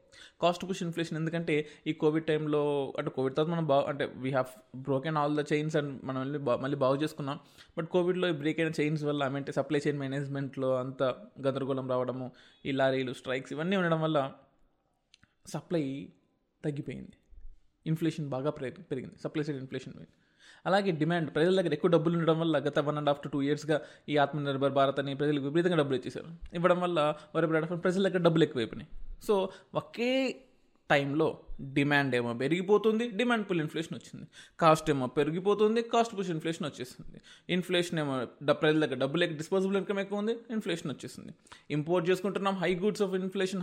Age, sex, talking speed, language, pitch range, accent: 20-39, male, 160 wpm, Telugu, 140-180 Hz, native